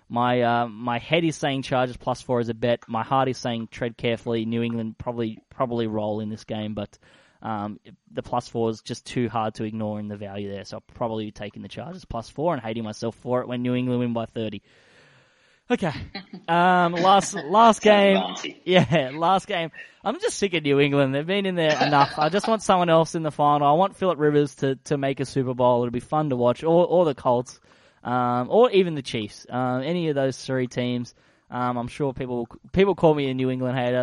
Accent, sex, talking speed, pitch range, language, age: Australian, male, 225 wpm, 120-150 Hz, English, 10-29